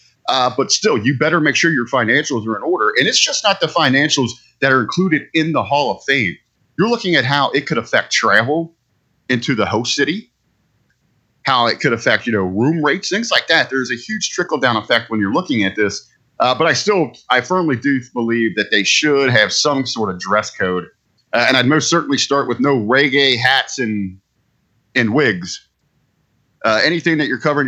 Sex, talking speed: male, 205 wpm